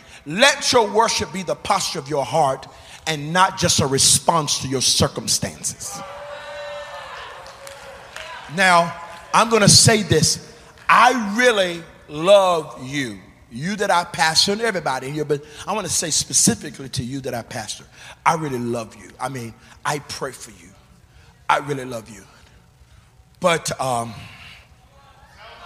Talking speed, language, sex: 145 wpm, English, male